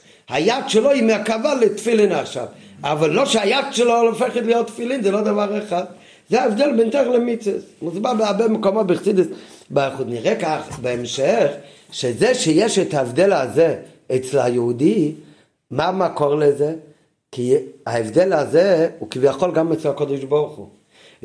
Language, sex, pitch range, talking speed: Hebrew, male, 145-210 Hz, 135 wpm